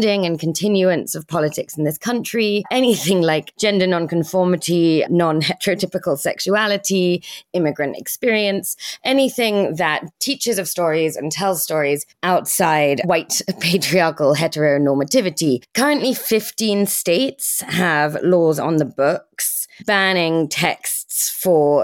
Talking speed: 105 wpm